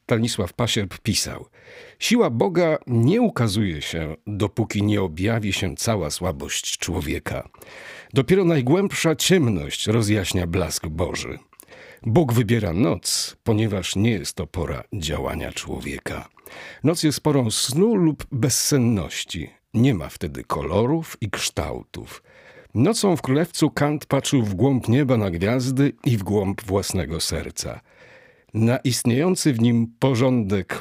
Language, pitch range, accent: Polish, 95-140 Hz, native